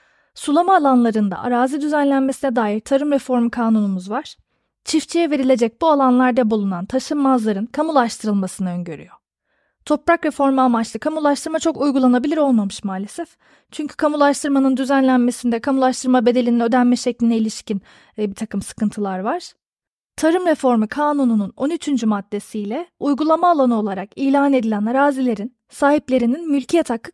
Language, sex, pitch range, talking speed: Turkish, female, 225-290 Hz, 115 wpm